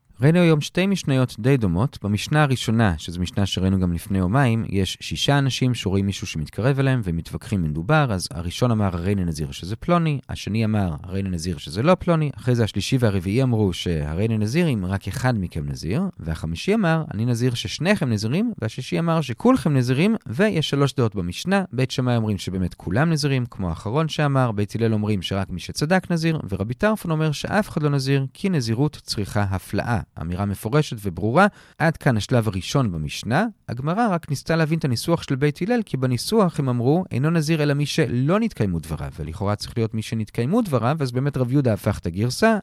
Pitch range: 100-155 Hz